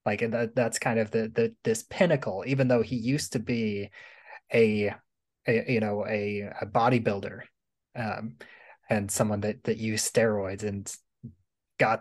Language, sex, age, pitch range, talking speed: English, male, 20-39, 110-125 Hz, 150 wpm